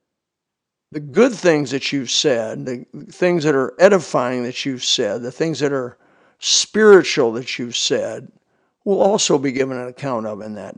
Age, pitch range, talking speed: 60-79, 135-170 Hz, 175 wpm